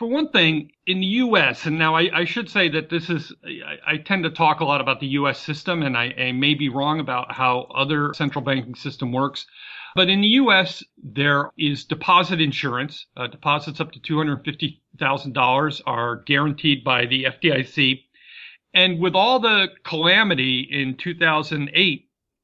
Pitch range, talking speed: 135-175 Hz, 170 wpm